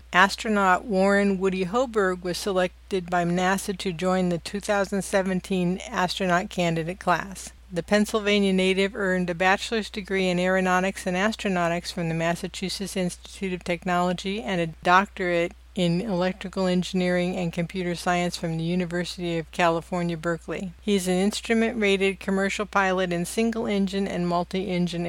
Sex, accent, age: female, American, 60-79